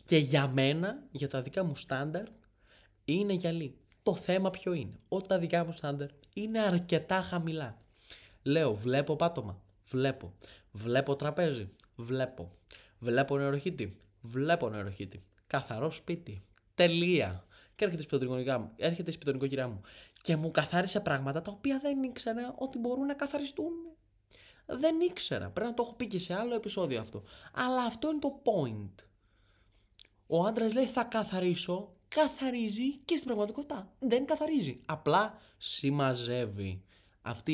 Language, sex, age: Greek, male, 20-39